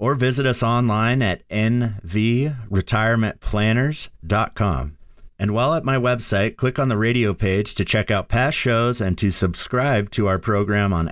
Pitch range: 90-120 Hz